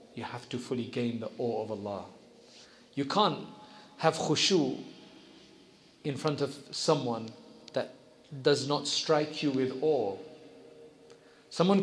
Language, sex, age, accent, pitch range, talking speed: English, male, 40-59, South African, 125-160 Hz, 125 wpm